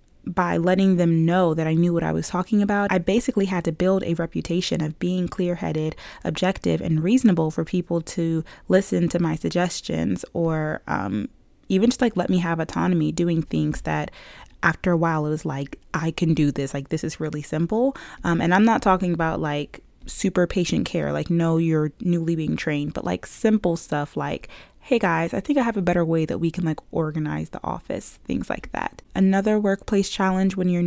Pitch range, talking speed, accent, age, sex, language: 165-205 Hz, 200 wpm, American, 20-39, female, English